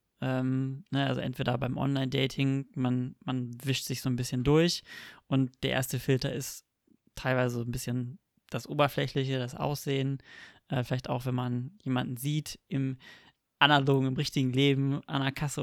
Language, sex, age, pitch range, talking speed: German, male, 20-39, 125-135 Hz, 160 wpm